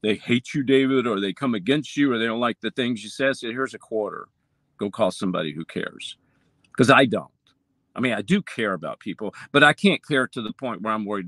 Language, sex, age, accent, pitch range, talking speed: English, male, 50-69, American, 135-215 Hz, 250 wpm